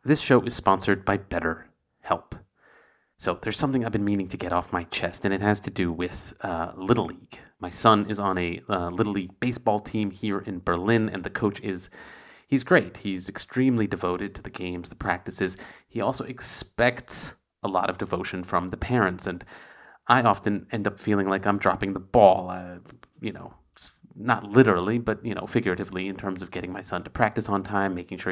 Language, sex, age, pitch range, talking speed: English, male, 30-49, 95-120 Hz, 200 wpm